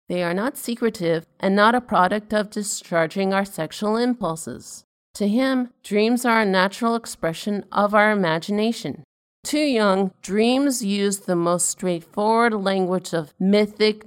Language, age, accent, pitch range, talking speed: English, 50-69, American, 180-225 Hz, 140 wpm